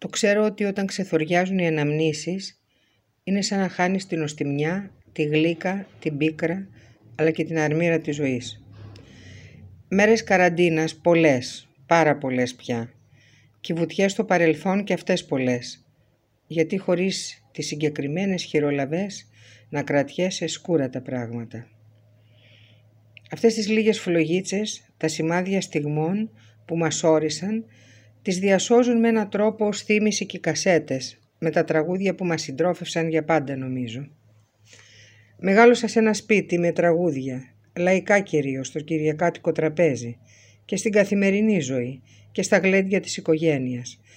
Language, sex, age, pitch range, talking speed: Greek, female, 50-69, 125-185 Hz, 130 wpm